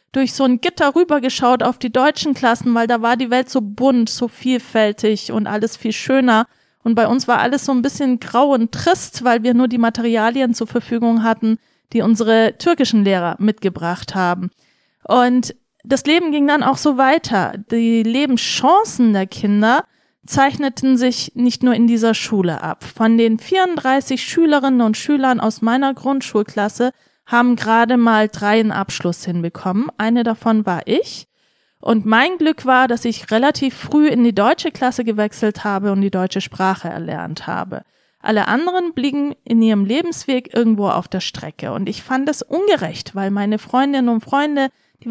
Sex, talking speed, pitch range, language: female, 170 wpm, 215-270 Hz, German